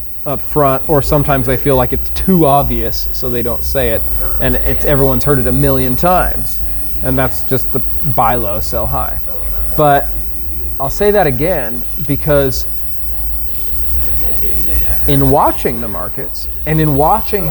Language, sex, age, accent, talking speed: English, male, 20-39, American, 150 wpm